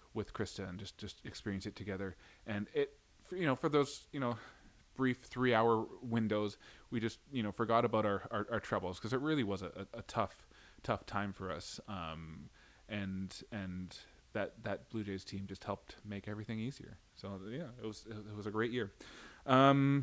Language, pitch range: English, 100-130 Hz